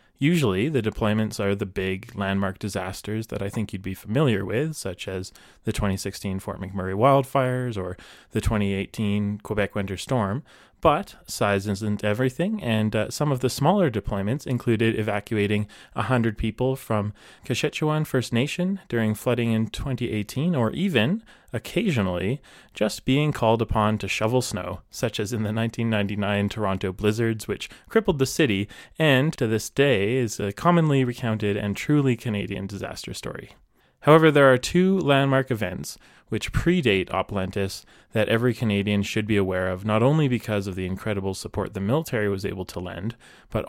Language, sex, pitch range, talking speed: English, male, 100-130 Hz, 160 wpm